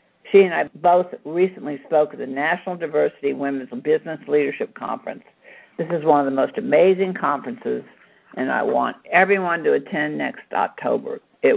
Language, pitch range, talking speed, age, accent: English, 145-200 Hz, 160 wpm, 60-79, American